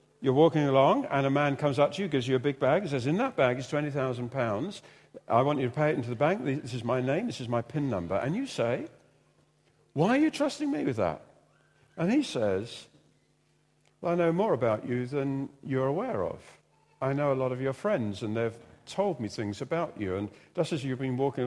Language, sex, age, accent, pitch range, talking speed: English, male, 50-69, British, 120-155 Hz, 235 wpm